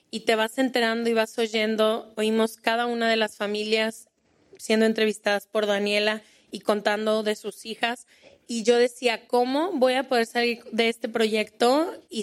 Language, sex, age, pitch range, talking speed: Spanish, female, 20-39, 220-240 Hz, 165 wpm